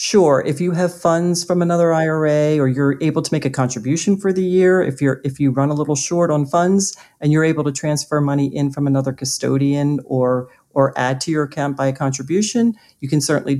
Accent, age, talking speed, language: American, 40-59, 220 wpm, English